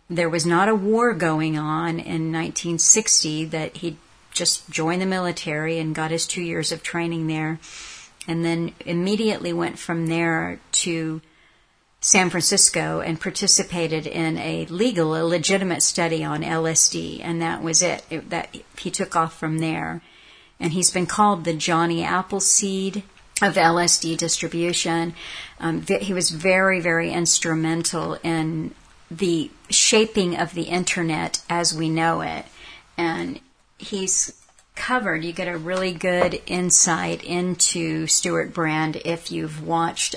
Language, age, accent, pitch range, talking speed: English, 50-69, American, 160-180 Hz, 140 wpm